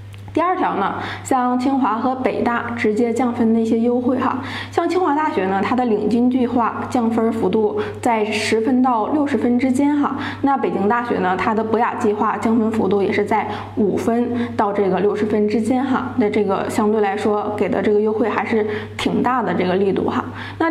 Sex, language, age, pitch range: female, Chinese, 20-39, 210-255 Hz